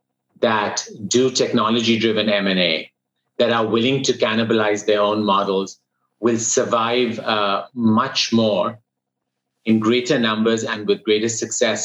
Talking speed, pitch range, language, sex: 125 wpm, 95-115 Hz, English, male